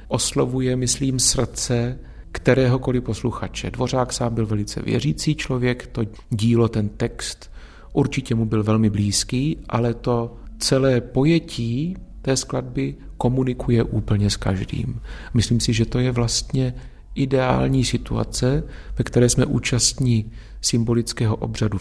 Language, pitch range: Czech, 105-125 Hz